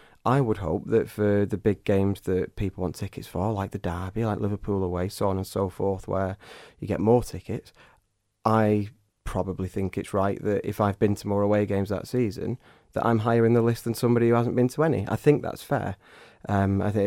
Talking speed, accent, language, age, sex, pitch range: 225 wpm, British, English, 30-49, male, 100-115 Hz